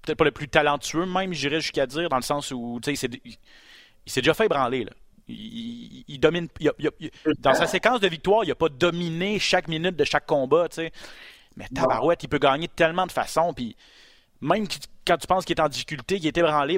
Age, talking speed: 30-49, 255 wpm